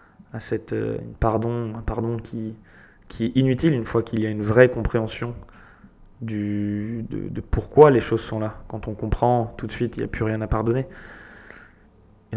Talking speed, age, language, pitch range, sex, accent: 200 wpm, 20-39, French, 105-120 Hz, male, French